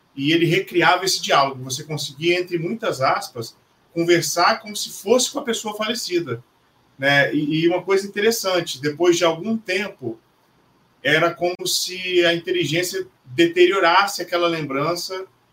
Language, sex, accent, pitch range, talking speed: Portuguese, male, Brazilian, 150-185 Hz, 135 wpm